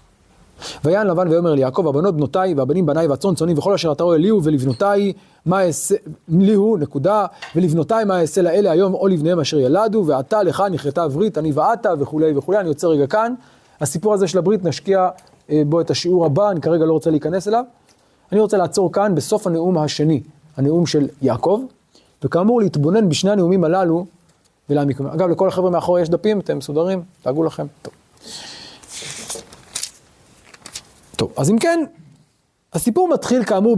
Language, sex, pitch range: Hebrew, male, 155-200 Hz